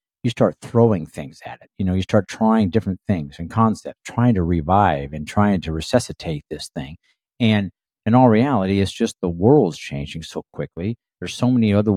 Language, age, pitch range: English, 50-69, 95-120 Hz